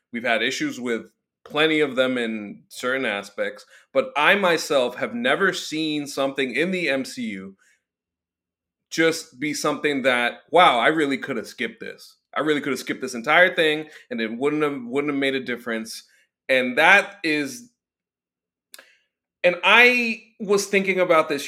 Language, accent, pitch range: English, American, 125-190 Hz